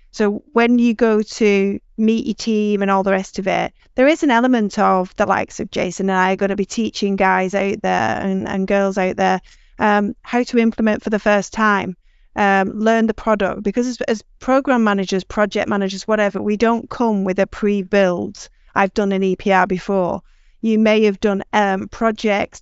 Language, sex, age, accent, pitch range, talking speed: English, female, 30-49, British, 195-220 Hz, 200 wpm